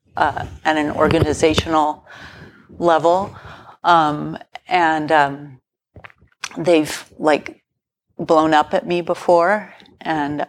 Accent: American